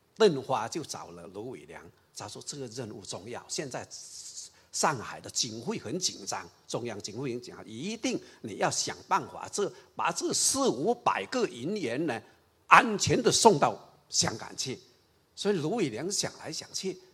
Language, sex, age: Chinese, male, 50-69